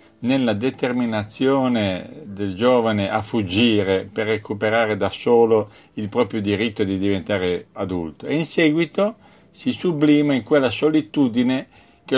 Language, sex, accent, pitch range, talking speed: Italian, male, native, 105-140 Hz, 125 wpm